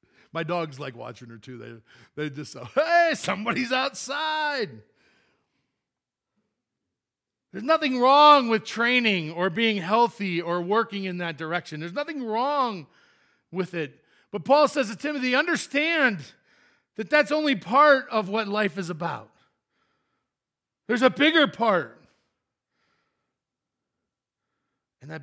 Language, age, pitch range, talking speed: English, 50-69, 155-255 Hz, 125 wpm